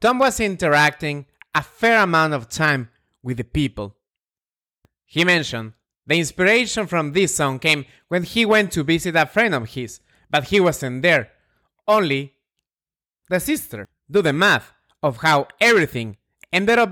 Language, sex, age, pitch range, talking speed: English, male, 30-49, 135-195 Hz, 155 wpm